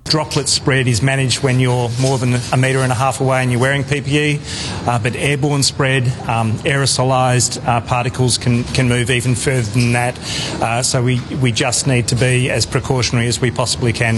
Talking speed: 195 wpm